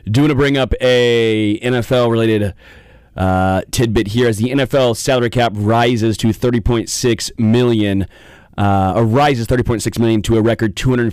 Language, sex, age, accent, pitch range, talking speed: English, male, 30-49, American, 110-145 Hz, 175 wpm